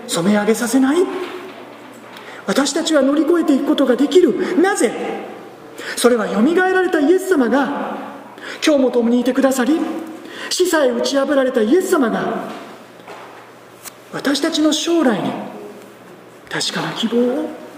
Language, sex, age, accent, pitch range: Japanese, male, 40-59, native, 215-285 Hz